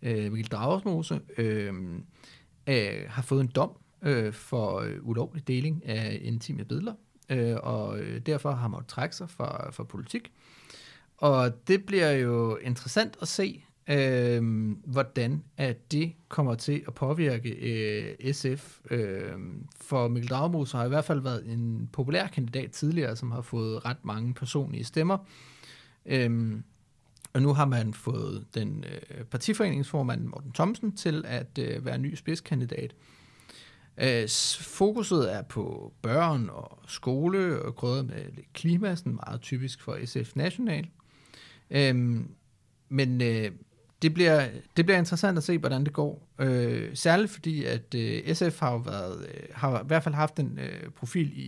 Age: 30-49